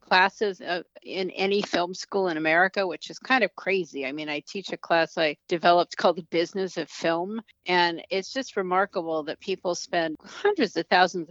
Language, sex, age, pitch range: English, female, 50-69, 160-200 Hz